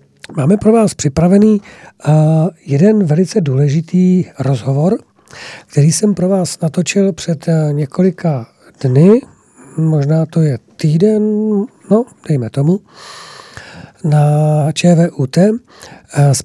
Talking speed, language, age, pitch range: 95 wpm, Czech, 50-69, 145-180 Hz